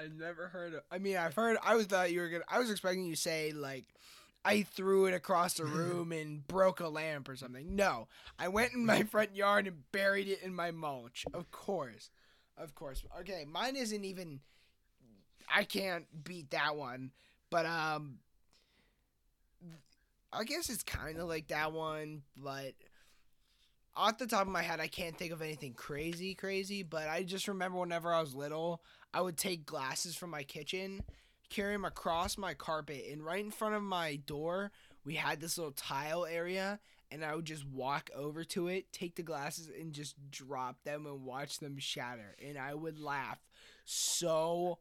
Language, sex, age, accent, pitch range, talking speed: English, male, 20-39, American, 150-185 Hz, 185 wpm